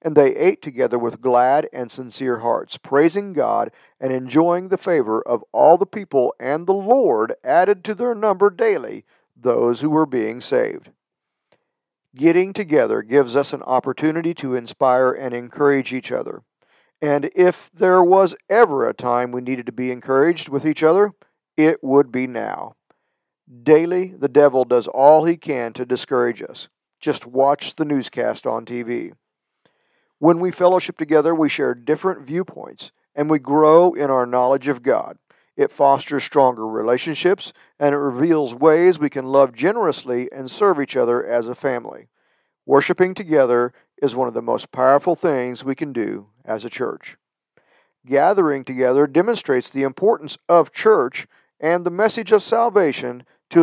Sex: male